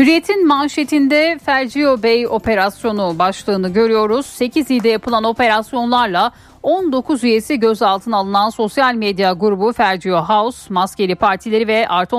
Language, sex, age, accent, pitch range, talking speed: Turkish, female, 10-29, native, 200-270 Hz, 120 wpm